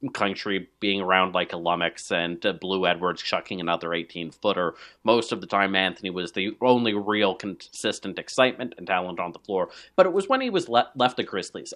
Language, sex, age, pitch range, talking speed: English, male, 30-49, 100-150 Hz, 205 wpm